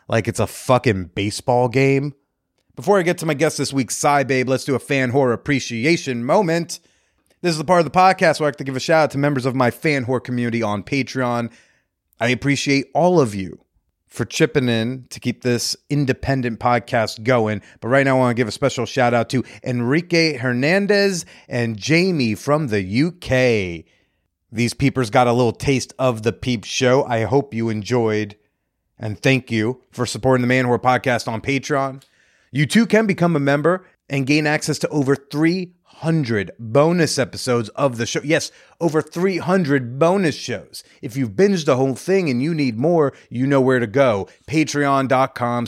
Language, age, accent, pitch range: English, 30-49, American, 120-150 Hz